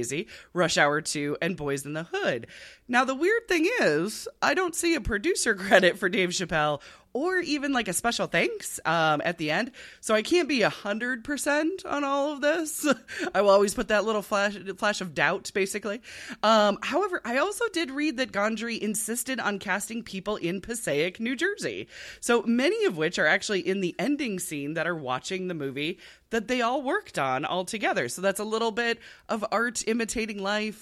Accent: American